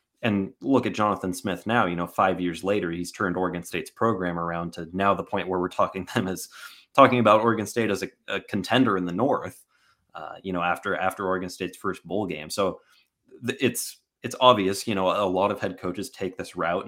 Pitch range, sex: 90-100 Hz, male